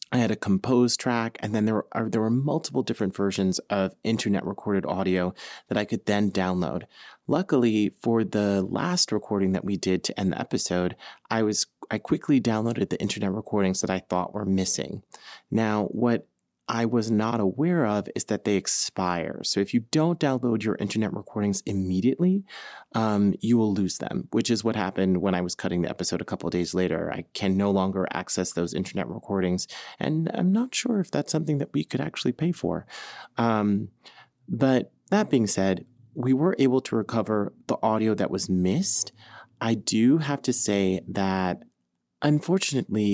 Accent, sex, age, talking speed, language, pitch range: American, male, 30-49, 180 wpm, English, 100-125 Hz